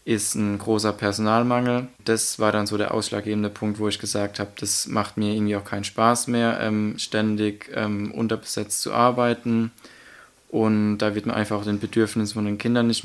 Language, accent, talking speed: German, German, 190 wpm